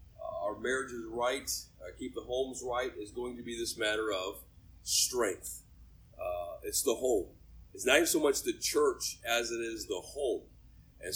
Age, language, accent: 30-49, English, American